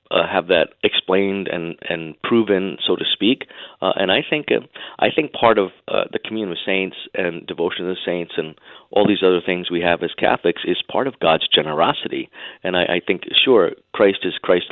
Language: English